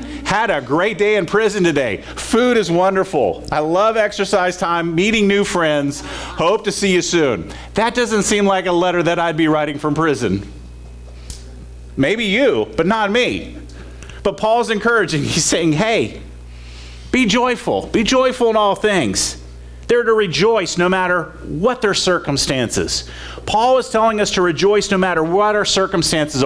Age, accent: 40-59, American